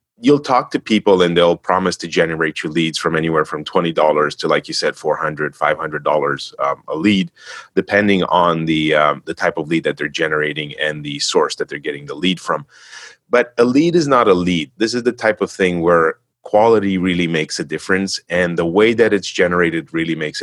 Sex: male